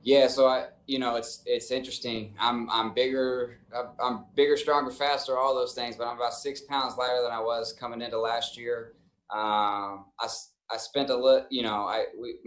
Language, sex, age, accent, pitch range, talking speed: English, male, 20-39, American, 105-145 Hz, 195 wpm